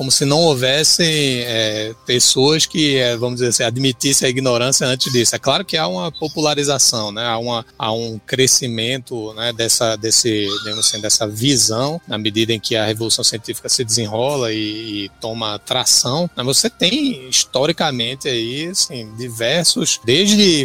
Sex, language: male, Portuguese